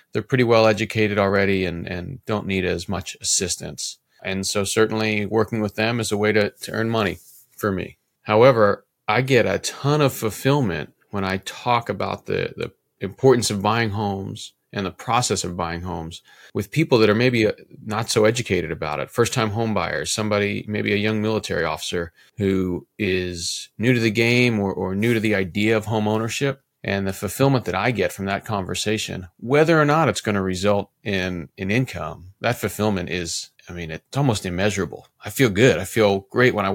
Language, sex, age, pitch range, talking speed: English, male, 30-49, 95-115 Hz, 195 wpm